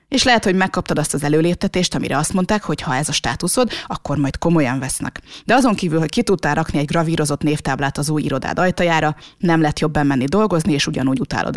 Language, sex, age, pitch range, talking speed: Hungarian, female, 30-49, 155-190 Hz, 215 wpm